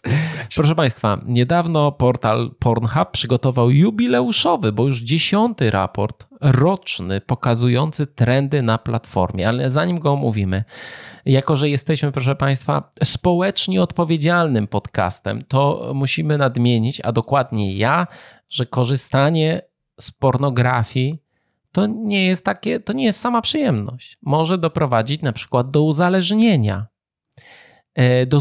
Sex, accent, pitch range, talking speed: male, native, 115-160 Hz, 115 wpm